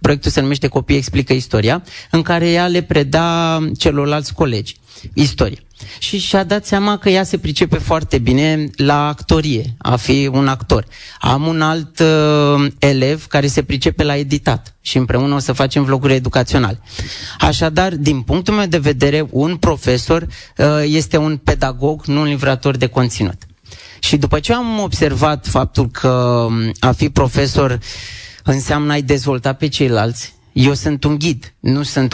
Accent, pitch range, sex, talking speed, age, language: native, 125-150 Hz, male, 160 wpm, 30-49, Romanian